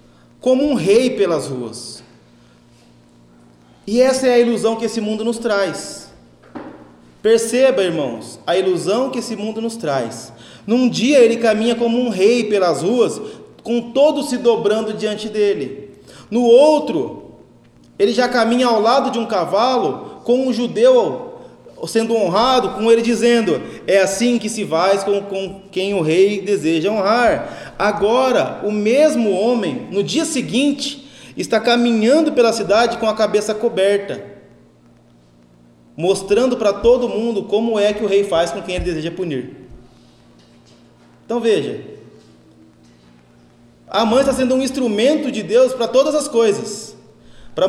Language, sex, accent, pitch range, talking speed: Portuguese, male, Brazilian, 190-240 Hz, 145 wpm